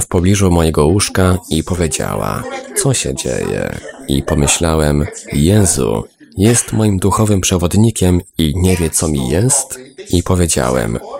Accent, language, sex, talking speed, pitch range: native, Polish, male, 130 wpm, 80-100 Hz